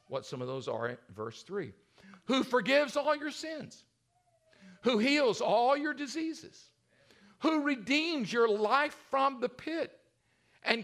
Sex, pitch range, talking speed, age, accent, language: male, 160-235 Hz, 145 wpm, 50-69, American, English